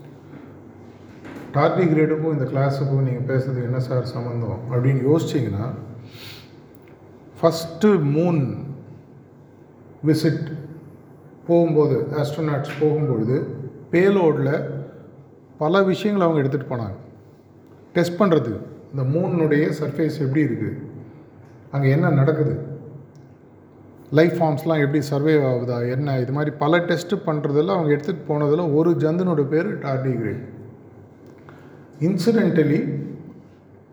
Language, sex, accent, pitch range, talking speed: Tamil, male, native, 130-155 Hz, 95 wpm